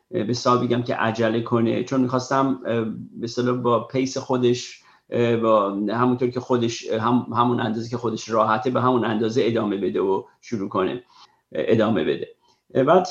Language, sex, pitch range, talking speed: Persian, male, 120-145 Hz, 150 wpm